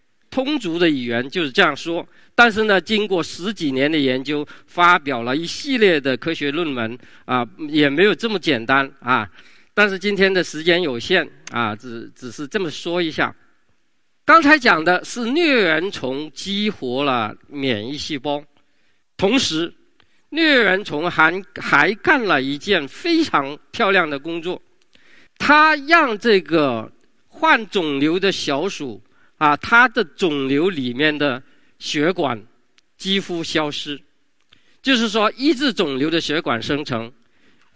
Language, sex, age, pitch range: Chinese, male, 50-69, 145-235 Hz